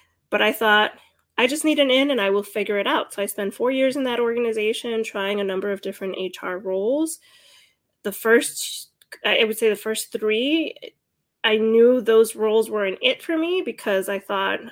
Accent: American